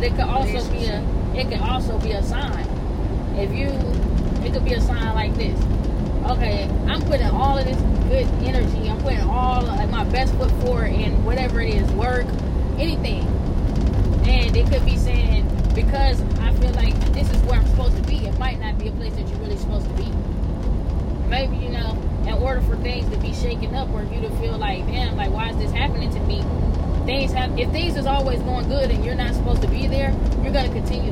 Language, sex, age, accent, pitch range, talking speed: English, female, 10-29, American, 80-95 Hz, 220 wpm